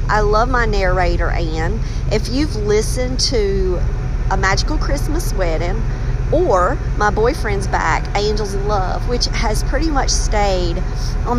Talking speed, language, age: 135 wpm, English, 40-59